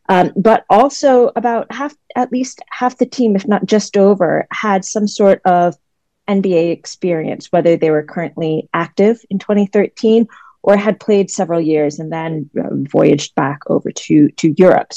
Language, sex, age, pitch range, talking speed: English, female, 30-49, 160-200 Hz, 170 wpm